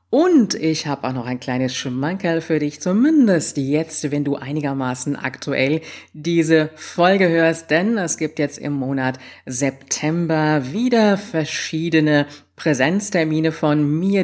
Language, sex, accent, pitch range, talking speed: German, female, German, 135-160 Hz, 130 wpm